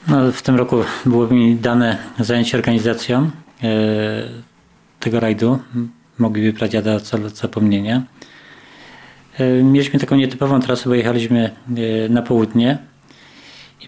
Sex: male